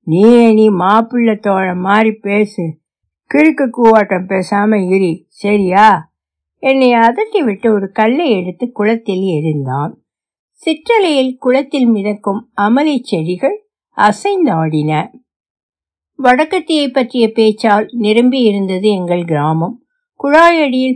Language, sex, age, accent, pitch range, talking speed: Tamil, female, 60-79, native, 190-260 Hz, 55 wpm